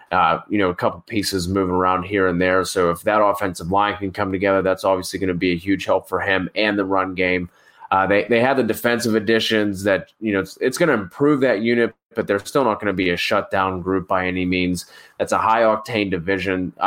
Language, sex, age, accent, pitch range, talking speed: English, male, 20-39, American, 95-110 Hz, 245 wpm